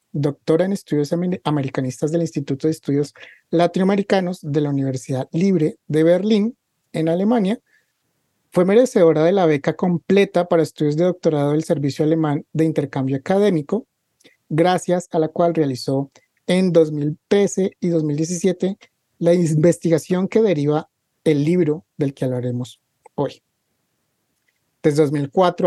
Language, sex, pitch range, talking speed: Spanish, male, 150-180 Hz, 125 wpm